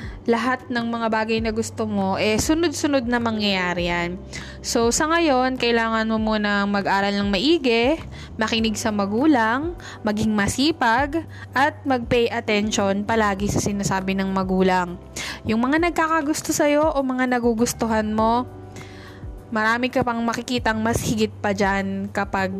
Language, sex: English, female